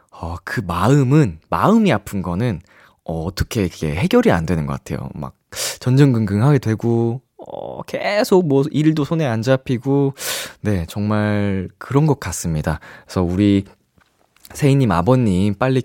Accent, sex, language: native, male, Korean